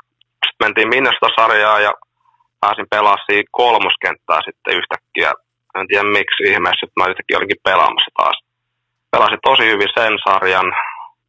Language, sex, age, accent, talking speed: Finnish, male, 20-39, native, 130 wpm